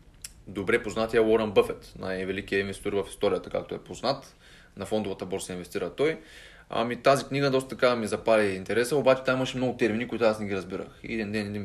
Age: 20-39